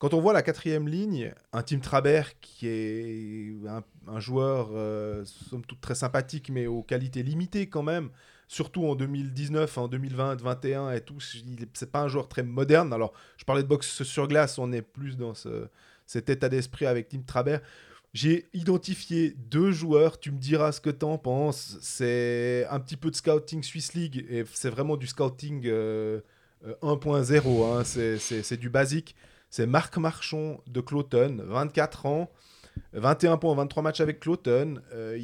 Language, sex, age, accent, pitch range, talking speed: French, male, 20-39, French, 120-150 Hz, 180 wpm